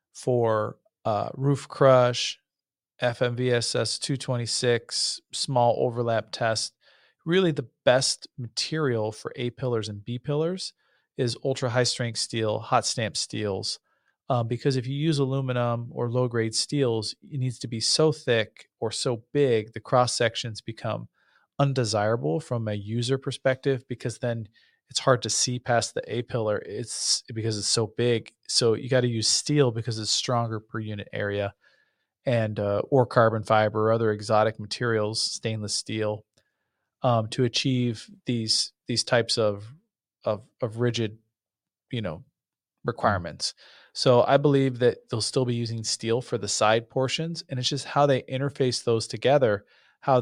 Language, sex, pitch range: English, male, 110-130 Hz